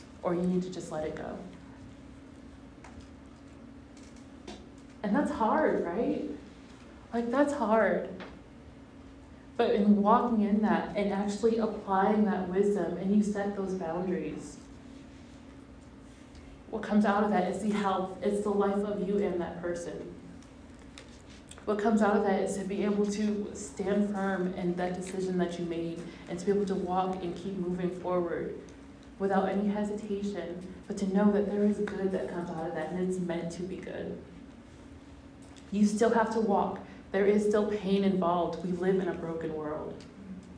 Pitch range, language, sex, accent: 180-205 Hz, English, female, American